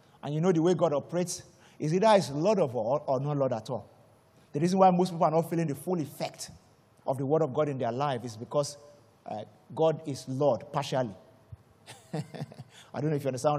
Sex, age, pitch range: male, 50-69, 130-180 Hz